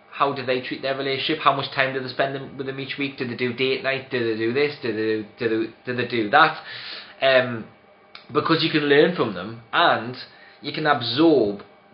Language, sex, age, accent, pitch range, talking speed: English, male, 20-39, British, 110-135 Hz, 230 wpm